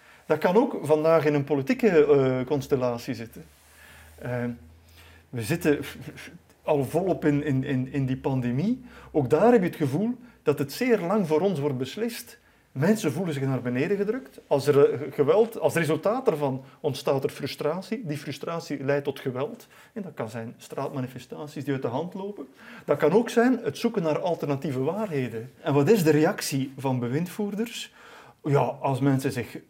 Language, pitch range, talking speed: Dutch, 135-180 Hz, 165 wpm